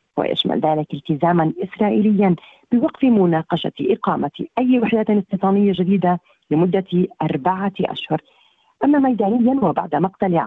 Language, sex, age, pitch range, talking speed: Arabic, female, 40-59, 160-205 Hz, 105 wpm